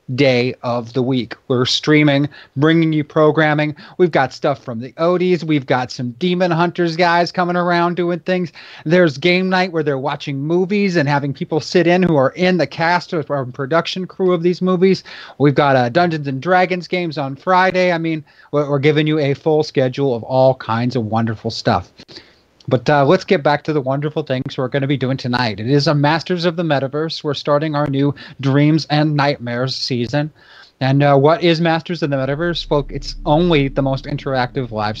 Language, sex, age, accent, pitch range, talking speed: English, male, 30-49, American, 130-165 Hz, 200 wpm